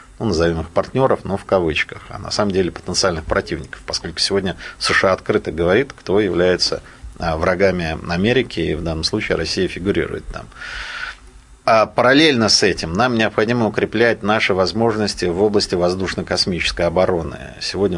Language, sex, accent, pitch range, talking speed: Russian, male, native, 85-105 Hz, 145 wpm